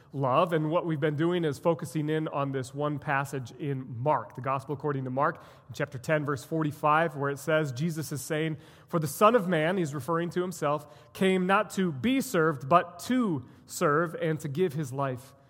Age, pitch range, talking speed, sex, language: 30-49, 145-185 Hz, 200 wpm, male, English